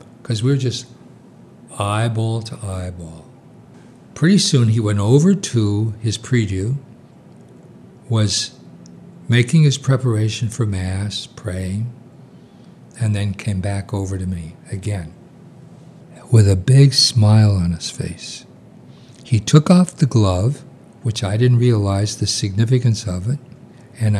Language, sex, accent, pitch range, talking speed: English, male, American, 105-130 Hz, 125 wpm